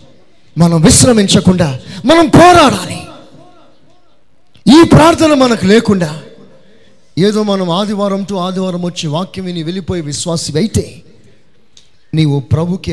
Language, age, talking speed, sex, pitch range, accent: Telugu, 30-49, 95 wpm, male, 135-175 Hz, native